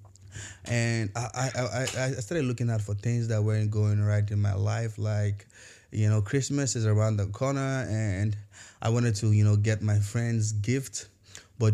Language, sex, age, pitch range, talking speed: English, male, 20-39, 105-125 Hz, 185 wpm